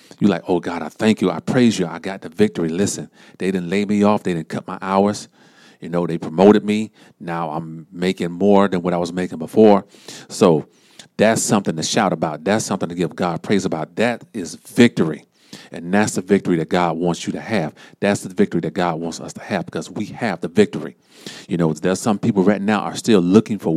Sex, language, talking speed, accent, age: male, English, 230 wpm, American, 40-59